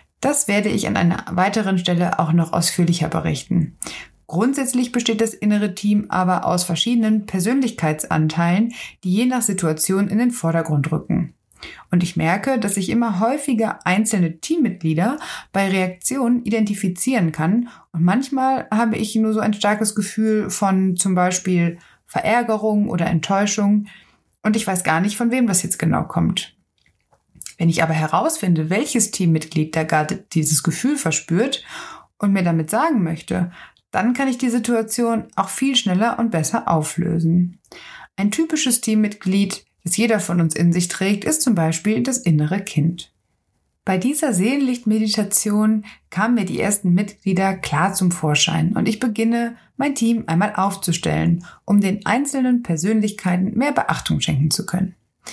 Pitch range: 170-225 Hz